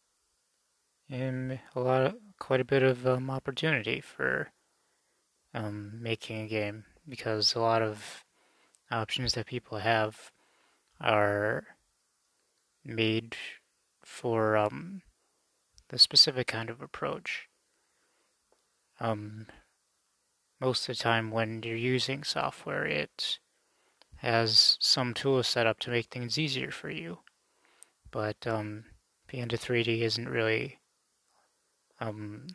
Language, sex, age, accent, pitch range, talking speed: English, male, 20-39, American, 110-125 Hz, 105 wpm